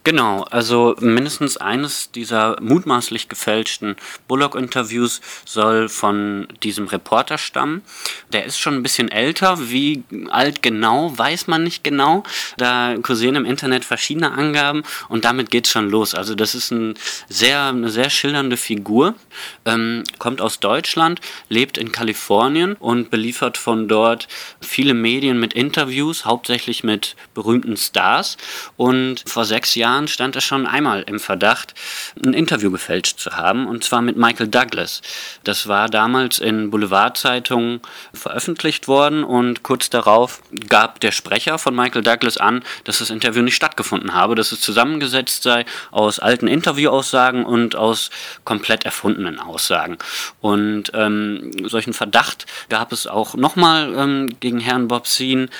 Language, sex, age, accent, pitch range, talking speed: German, male, 30-49, German, 110-130 Hz, 140 wpm